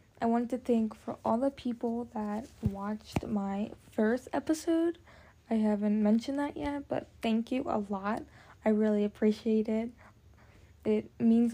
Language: English